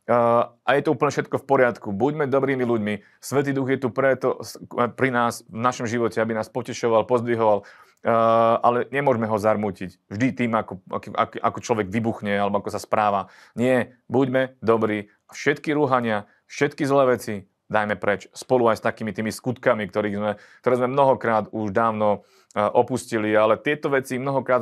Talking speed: 170 wpm